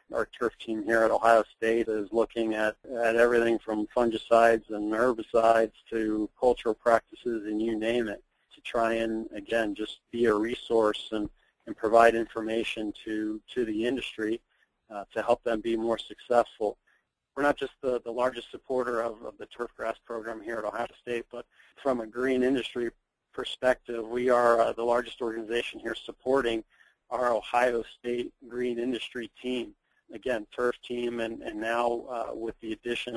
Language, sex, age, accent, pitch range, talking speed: English, male, 40-59, American, 110-120 Hz, 170 wpm